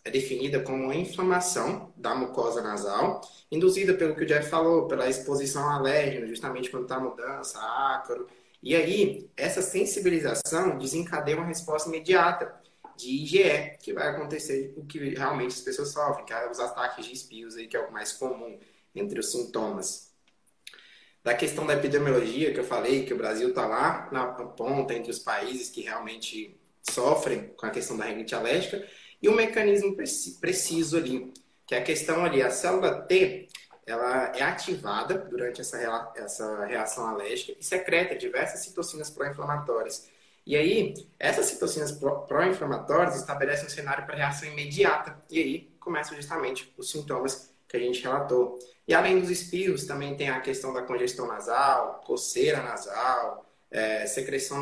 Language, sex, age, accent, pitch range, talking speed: Portuguese, male, 20-39, Brazilian, 130-185 Hz, 160 wpm